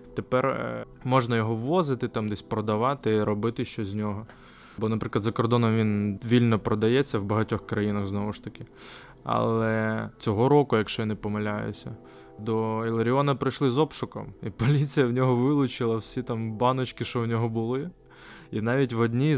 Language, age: Ukrainian, 20-39